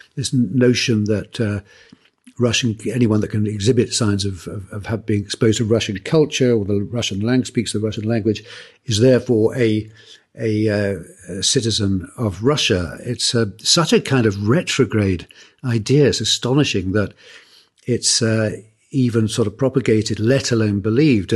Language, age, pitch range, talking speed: English, 60-79, 105-125 Hz, 150 wpm